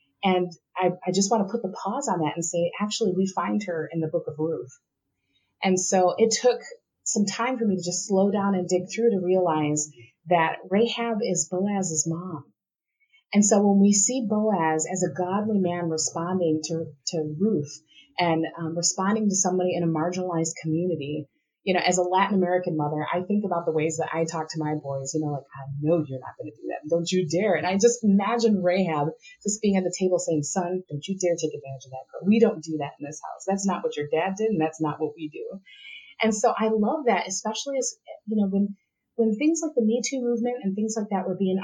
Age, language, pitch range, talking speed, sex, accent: 30-49, English, 165-210 Hz, 230 wpm, female, American